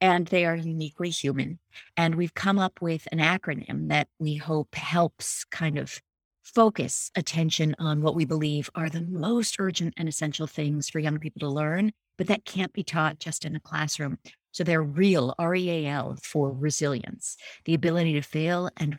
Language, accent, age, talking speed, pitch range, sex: English, American, 40-59, 175 wpm, 145-170 Hz, female